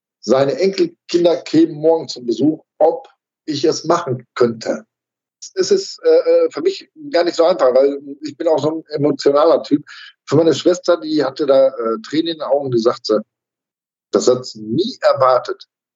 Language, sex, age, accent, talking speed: German, male, 50-69, German, 175 wpm